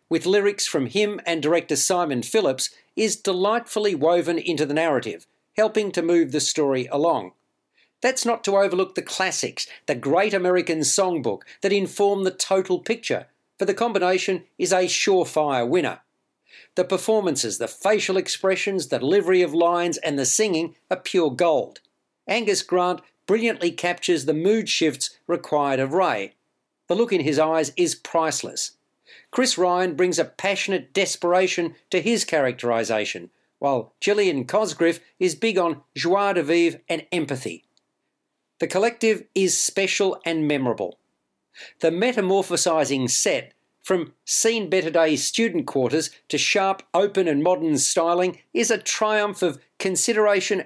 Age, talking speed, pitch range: 50-69, 140 wpm, 160-200 Hz